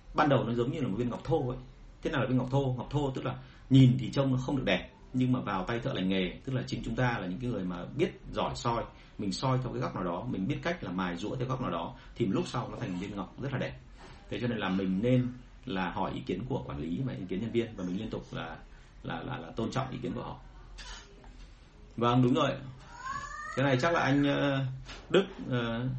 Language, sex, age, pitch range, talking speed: Vietnamese, male, 30-49, 115-140 Hz, 270 wpm